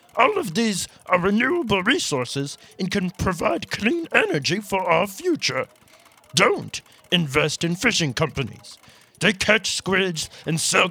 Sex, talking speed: male, 130 wpm